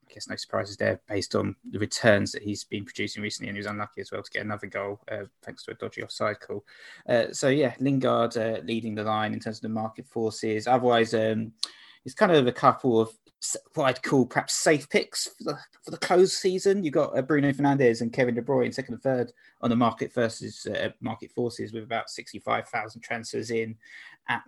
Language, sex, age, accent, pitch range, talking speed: English, male, 20-39, British, 110-125 Hz, 220 wpm